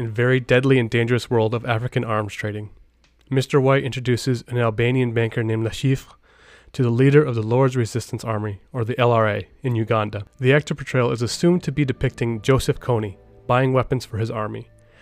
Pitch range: 115-135 Hz